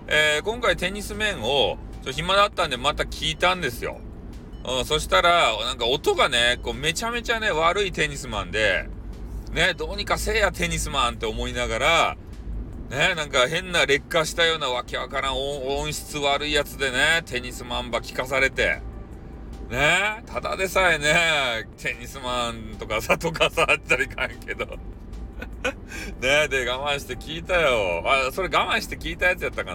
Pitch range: 120-155 Hz